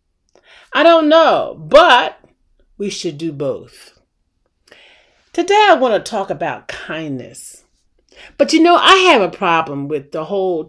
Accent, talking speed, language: American, 140 wpm, English